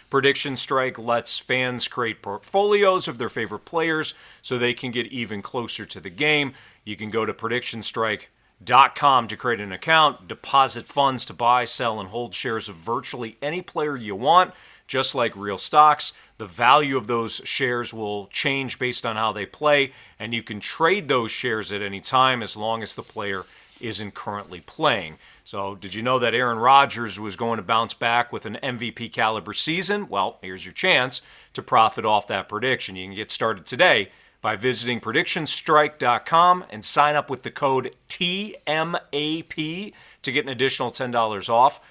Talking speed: 175 wpm